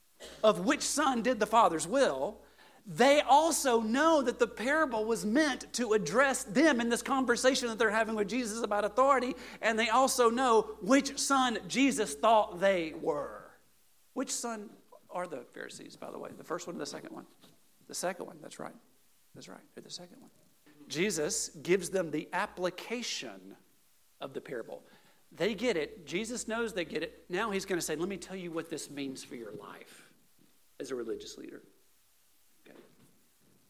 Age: 40-59